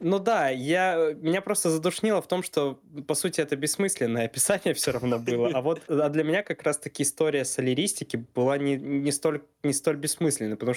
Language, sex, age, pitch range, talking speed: Russian, male, 20-39, 115-150 Hz, 165 wpm